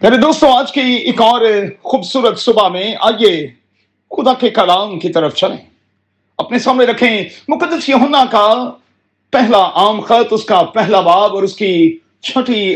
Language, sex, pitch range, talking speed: Urdu, male, 165-250 Hz, 140 wpm